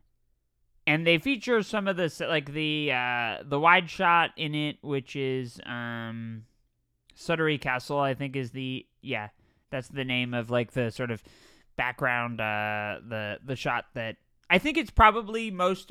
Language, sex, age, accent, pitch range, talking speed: English, male, 20-39, American, 125-185 Hz, 160 wpm